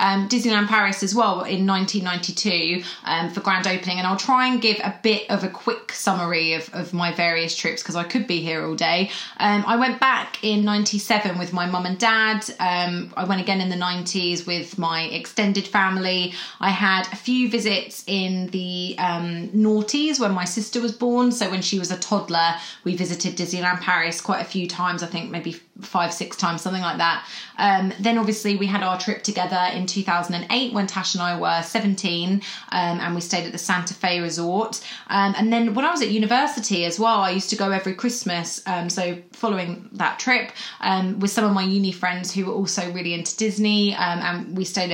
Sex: female